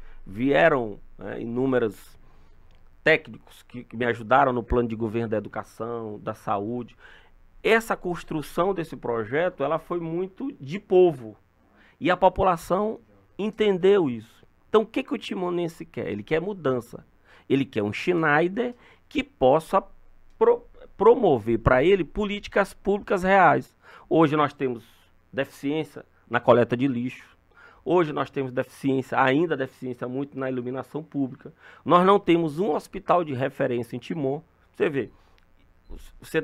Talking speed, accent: 135 wpm, Brazilian